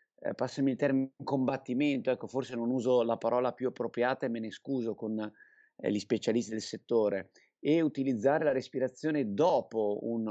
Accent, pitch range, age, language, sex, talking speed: native, 120-145 Hz, 30-49, Italian, male, 155 wpm